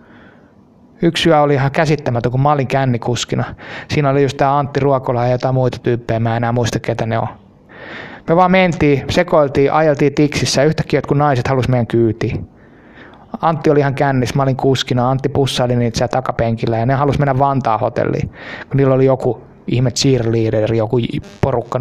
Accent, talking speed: native, 170 wpm